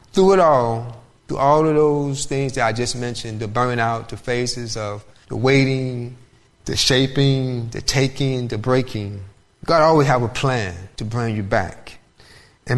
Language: English